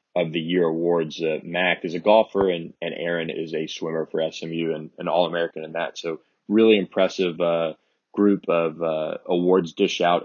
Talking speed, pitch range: 195 wpm, 85-95 Hz